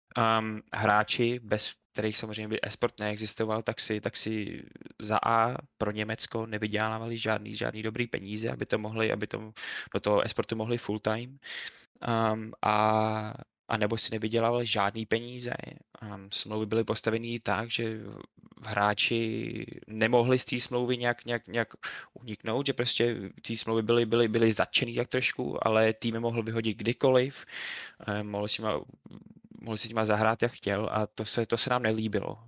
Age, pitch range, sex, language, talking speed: 20-39, 105-115 Hz, male, Czech, 150 wpm